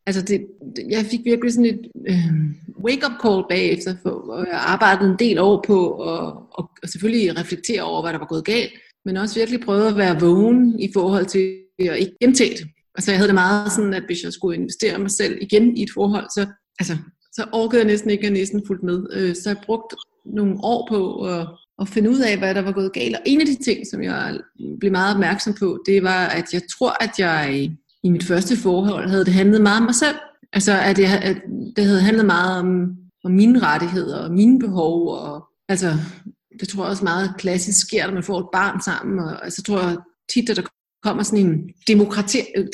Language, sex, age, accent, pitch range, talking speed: Danish, female, 30-49, native, 185-215 Hz, 220 wpm